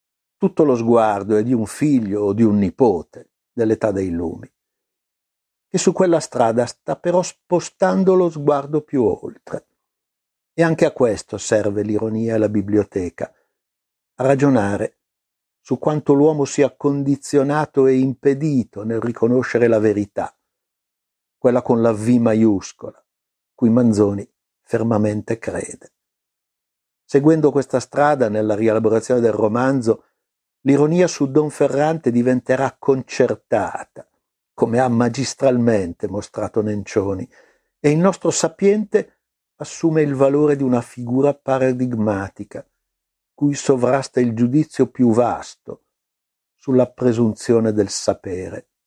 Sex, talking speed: male, 115 wpm